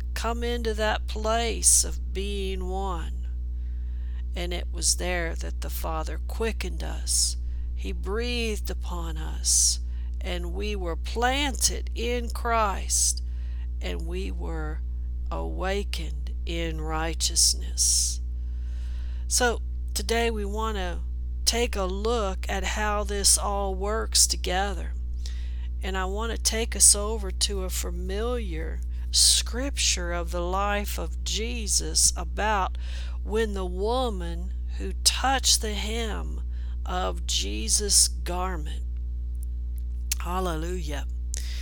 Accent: American